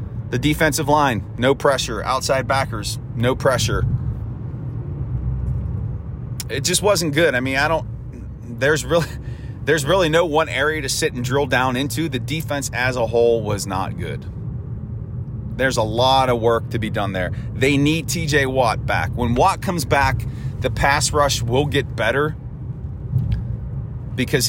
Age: 30-49